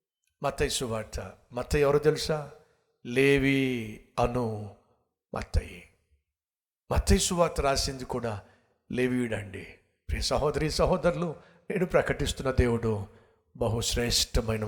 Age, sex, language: 60-79, male, Telugu